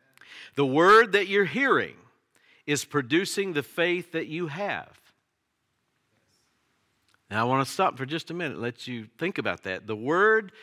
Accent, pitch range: American, 130-165 Hz